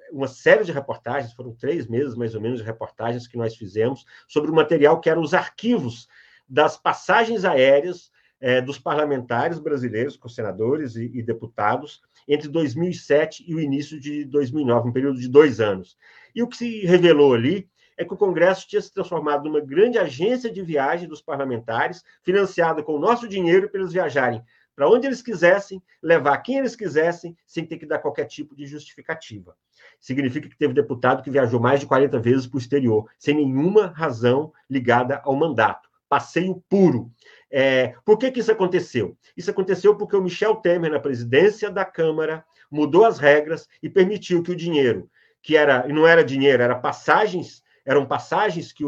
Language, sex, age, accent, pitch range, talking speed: Portuguese, male, 50-69, Brazilian, 130-180 Hz, 180 wpm